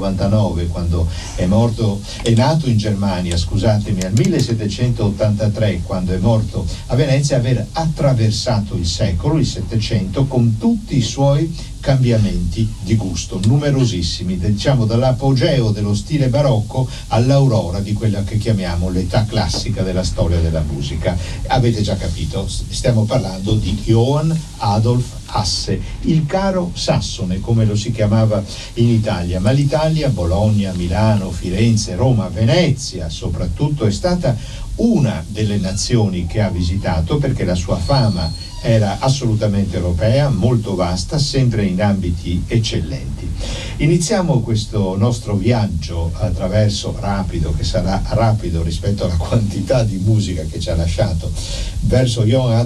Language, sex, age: Italian, male, 60-79